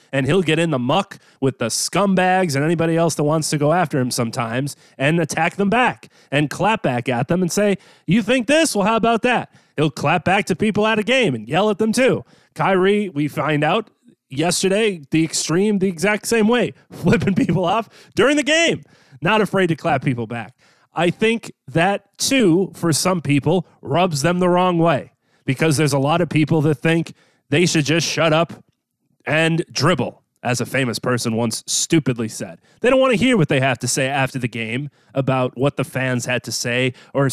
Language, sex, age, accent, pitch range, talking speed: English, male, 30-49, American, 140-200 Hz, 205 wpm